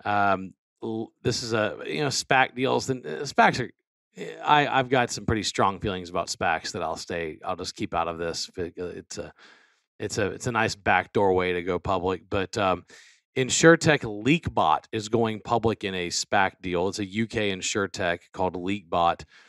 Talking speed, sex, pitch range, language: 180 wpm, male, 95-115 Hz, English